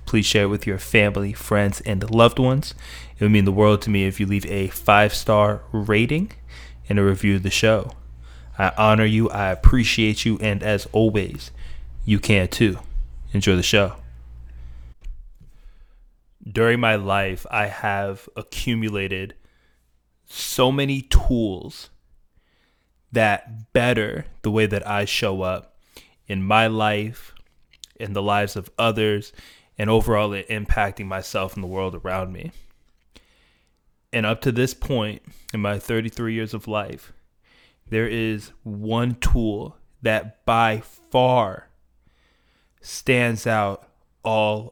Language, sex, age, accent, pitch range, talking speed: English, male, 20-39, American, 95-110 Hz, 135 wpm